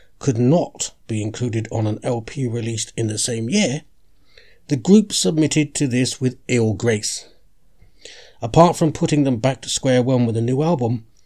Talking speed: 170 wpm